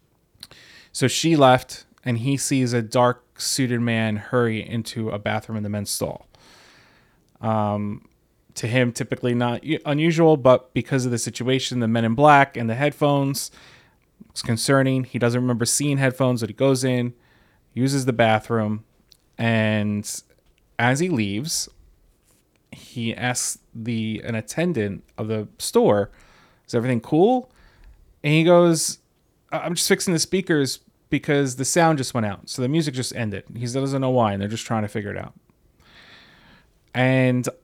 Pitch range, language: 115-140 Hz, English